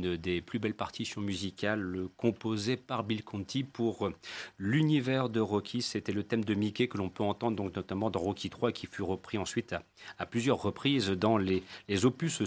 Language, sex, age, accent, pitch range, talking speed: French, male, 40-59, French, 100-130 Hz, 190 wpm